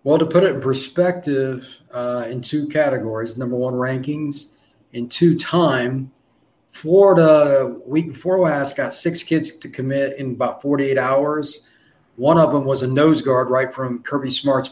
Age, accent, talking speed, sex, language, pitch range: 40-59, American, 165 wpm, male, English, 135-170 Hz